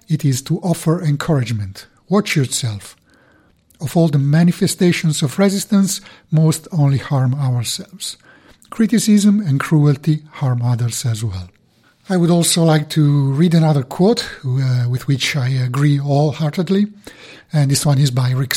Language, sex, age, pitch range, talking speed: English, male, 50-69, 130-170 Hz, 140 wpm